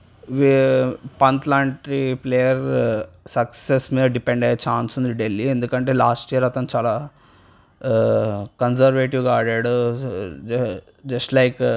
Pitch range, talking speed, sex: 120-135 Hz, 95 wpm, male